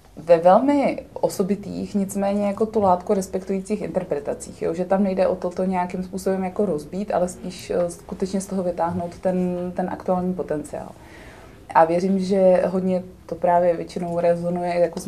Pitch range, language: 170-185 Hz, Czech